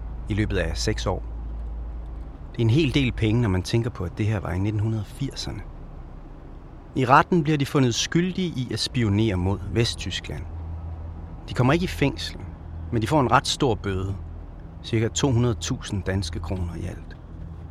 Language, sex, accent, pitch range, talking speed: Danish, male, native, 80-115 Hz, 170 wpm